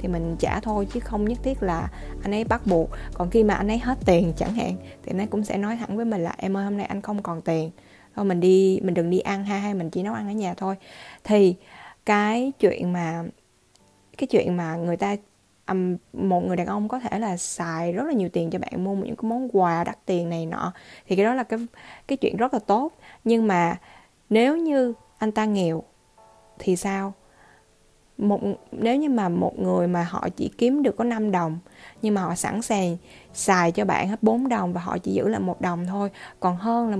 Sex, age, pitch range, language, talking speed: female, 10-29, 175-220 Hz, Vietnamese, 235 wpm